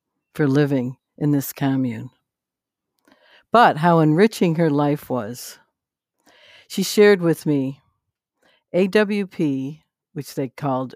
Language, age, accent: English, 60-79, American